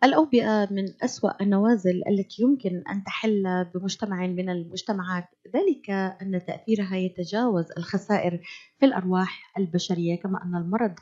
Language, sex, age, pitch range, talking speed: Arabic, female, 30-49, 180-230 Hz, 120 wpm